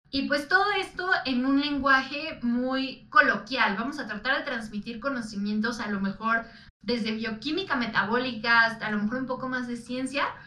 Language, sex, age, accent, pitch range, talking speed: Spanish, female, 20-39, Mexican, 220-280 Hz, 170 wpm